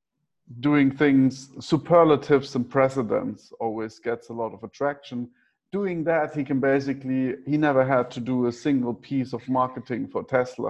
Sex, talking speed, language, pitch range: male, 155 wpm, English, 120-140 Hz